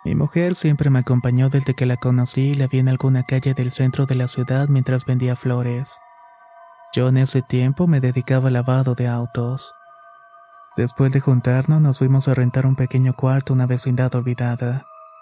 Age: 30-49